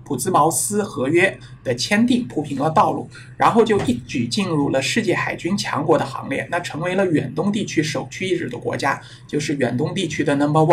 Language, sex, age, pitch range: Chinese, male, 60-79, 125-175 Hz